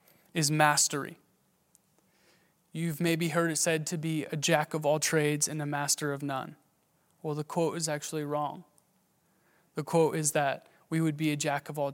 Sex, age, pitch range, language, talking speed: male, 20-39, 155-175 Hz, English, 180 wpm